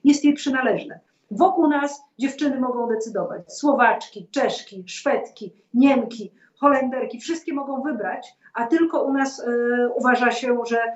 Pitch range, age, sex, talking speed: 220-265 Hz, 40-59, female, 130 wpm